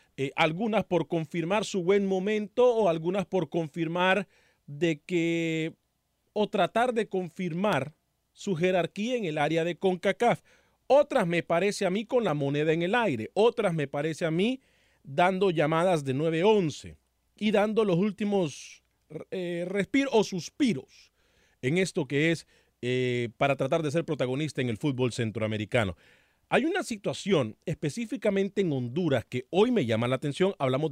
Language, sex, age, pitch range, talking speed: Spanish, male, 40-59, 145-210 Hz, 155 wpm